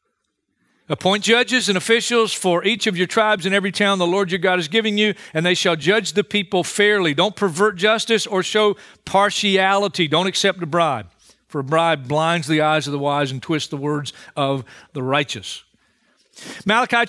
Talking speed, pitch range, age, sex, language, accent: 185 wpm, 165-215 Hz, 40-59, male, English, American